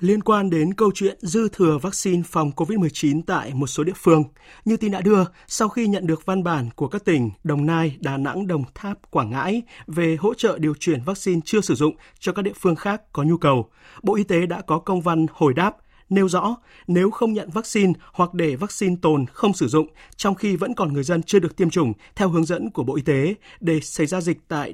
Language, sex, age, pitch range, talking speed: Vietnamese, male, 30-49, 155-195 Hz, 235 wpm